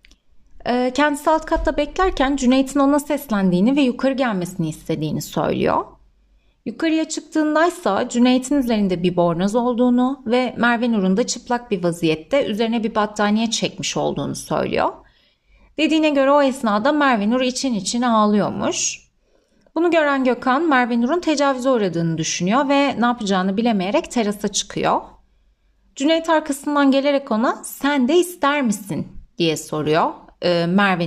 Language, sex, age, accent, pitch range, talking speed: Turkish, female, 30-49, native, 190-275 Hz, 125 wpm